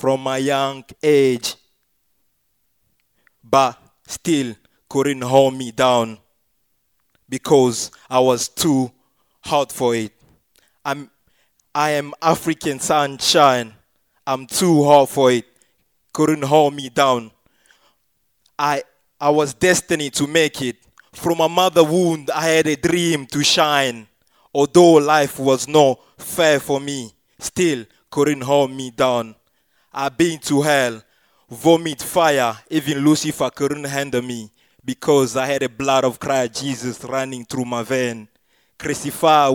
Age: 20-39